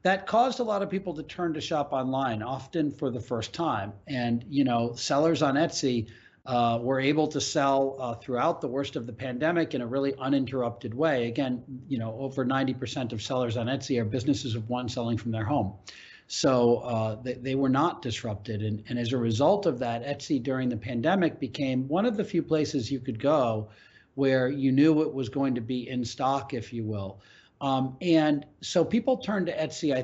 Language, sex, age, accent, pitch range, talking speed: English, male, 50-69, American, 115-140 Hz, 210 wpm